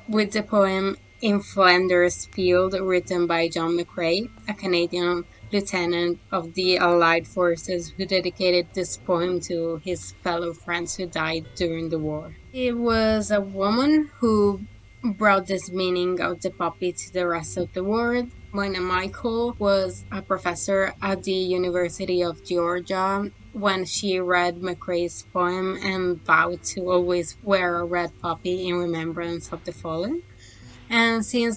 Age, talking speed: 20-39, 145 wpm